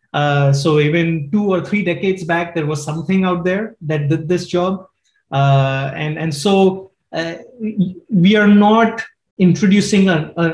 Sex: male